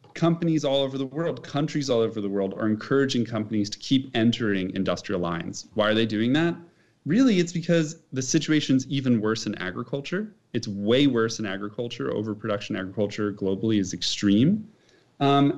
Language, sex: English, male